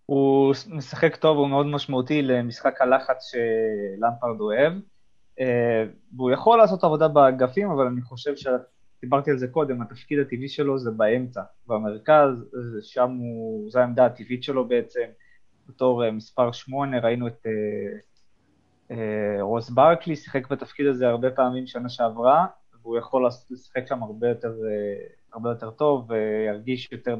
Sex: male